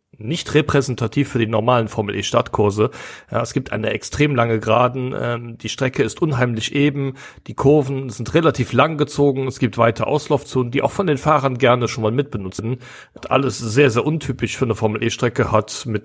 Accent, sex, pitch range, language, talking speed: German, male, 115-135 Hz, German, 180 wpm